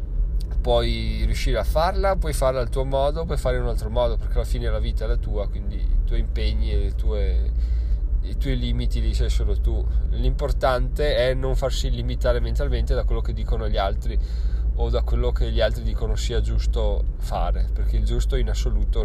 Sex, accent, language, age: male, native, Italian, 20-39